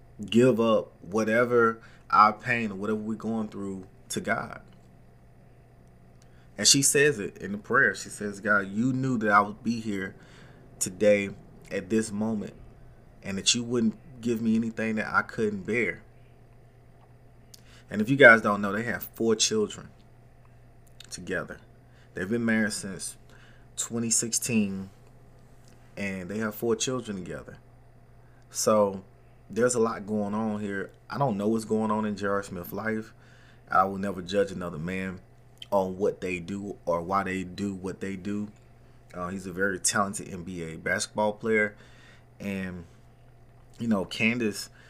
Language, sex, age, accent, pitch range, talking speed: English, male, 30-49, American, 100-120 Hz, 150 wpm